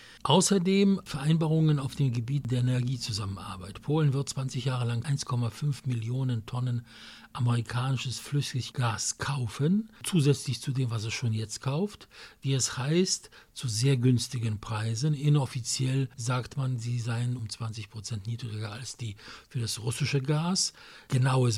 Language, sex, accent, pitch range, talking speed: English, male, German, 115-140 Hz, 140 wpm